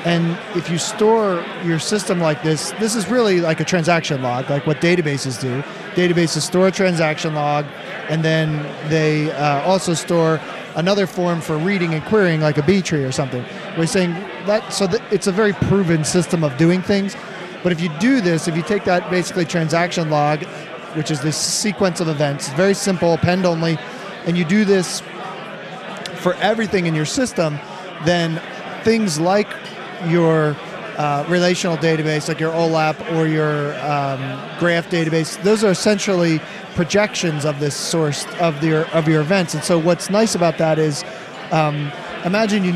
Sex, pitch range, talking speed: male, 155-185 Hz, 170 wpm